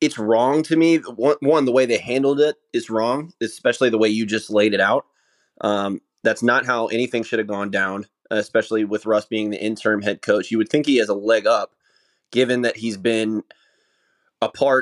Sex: male